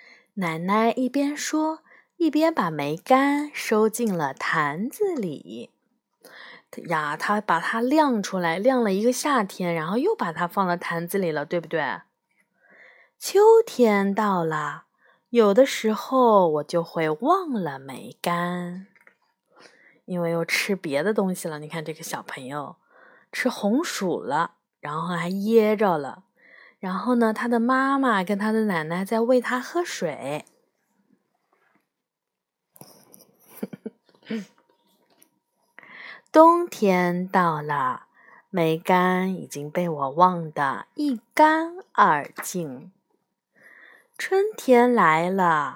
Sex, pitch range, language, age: female, 180-275 Hz, Chinese, 20-39